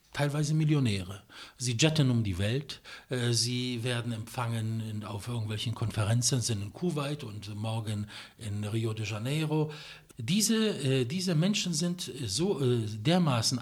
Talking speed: 140 wpm